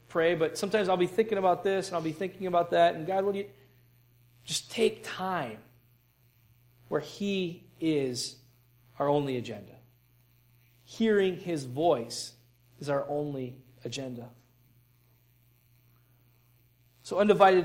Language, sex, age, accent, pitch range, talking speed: English, male, 40-59, American, 120-170 Hz, 120 wpm